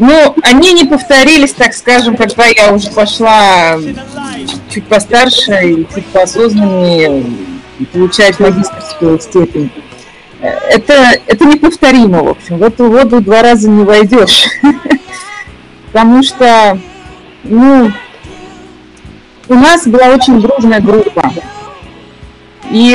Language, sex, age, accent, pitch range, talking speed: Russian, female, 30-49, native, 190-250 Hz, 105 wpm